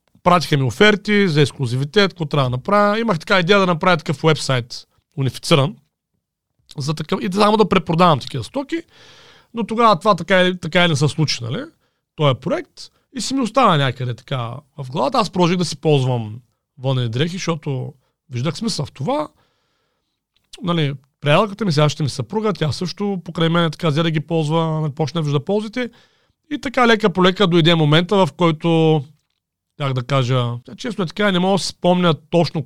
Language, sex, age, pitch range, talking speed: Bulgarian, male, 40-59, 140-195 Hz, 180 wpm